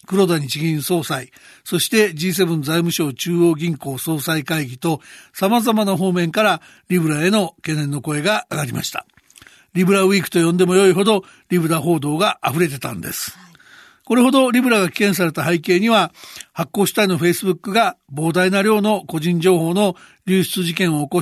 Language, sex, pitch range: Japanese, male, 165-205 Hz